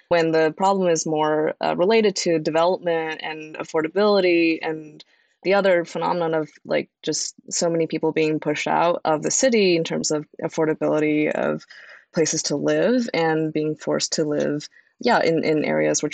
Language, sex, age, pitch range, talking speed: English, female, 20-39, 150-170 Hz, 165 wpm